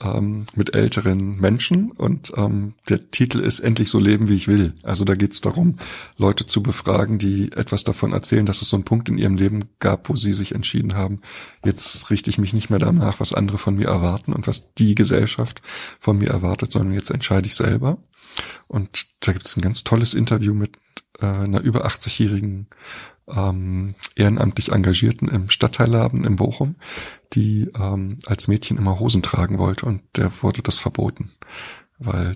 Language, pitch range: German, 100-125 Hz